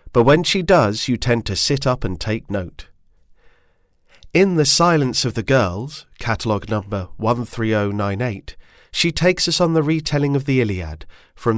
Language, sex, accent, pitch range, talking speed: English, male, British, 100-140 Hz, 160 wpm